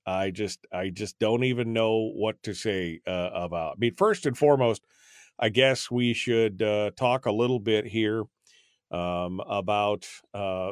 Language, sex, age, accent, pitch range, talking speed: English, male, 40-59, American, 105-125 Hz, 170 wpm